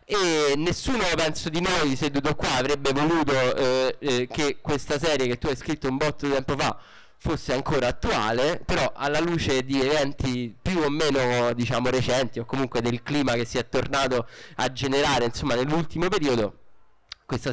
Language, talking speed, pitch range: Italian, 170 wpm, 125-150 Hz